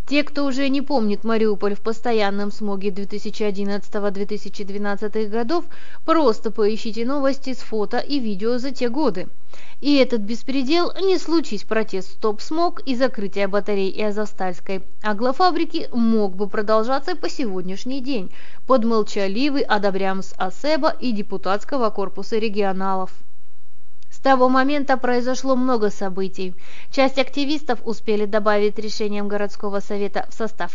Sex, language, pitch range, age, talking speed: female, Russian, 205-265 Hz, 20-39, 125 wpm